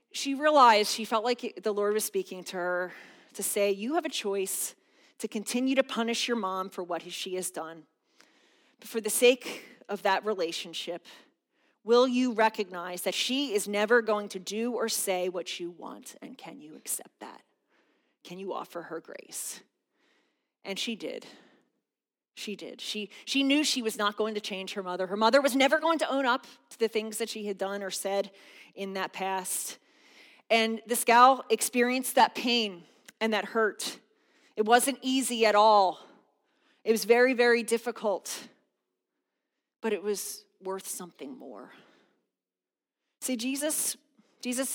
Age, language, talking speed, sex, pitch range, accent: 30-49, English, 165 wpm, female, 195-250 Hz, American